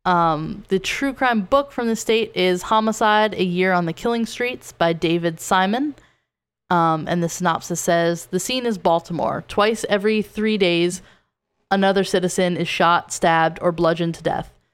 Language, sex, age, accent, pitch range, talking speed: English, female, 10-29, American, 170-200 Hz, 165 wpm